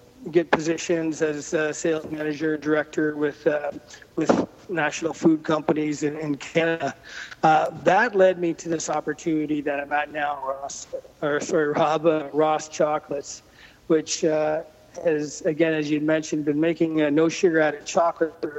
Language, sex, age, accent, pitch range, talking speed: English, male, 40-59, American, 150-175 Hz, 150 wpm